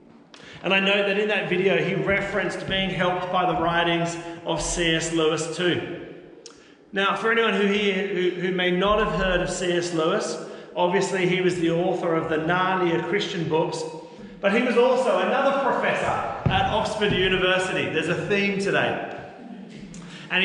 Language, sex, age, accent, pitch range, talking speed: English, male, 40-59, Australian, 160-200 Hz, 165 wpm